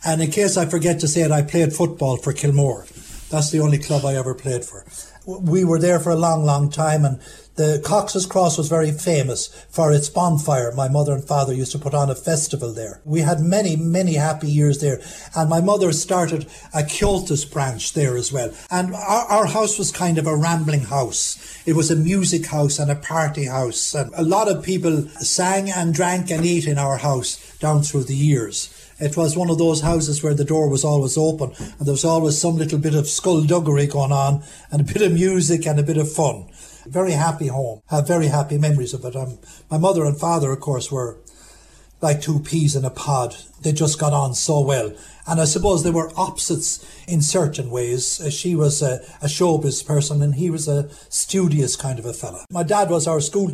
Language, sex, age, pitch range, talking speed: English, male, 60-79, 145-175 Hz, 220 wpm